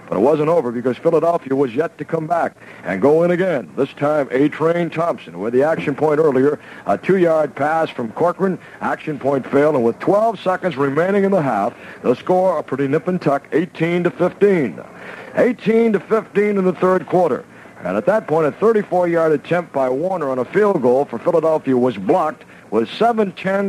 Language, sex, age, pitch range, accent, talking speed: English, male, 60-79, 145-180 Hz, American, 185 wpm